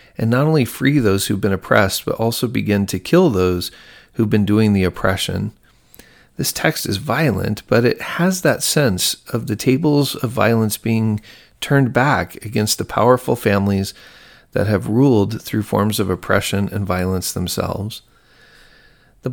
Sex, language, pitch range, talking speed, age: male, English, 100-130 Hz, 160 wpm, 40-59